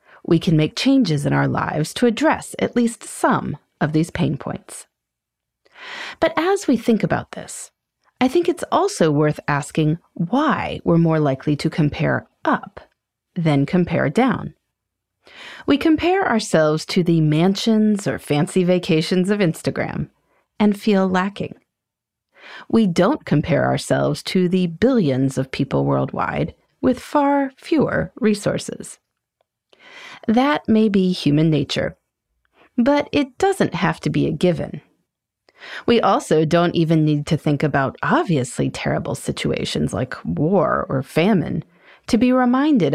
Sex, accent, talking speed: female, American, 135 wpm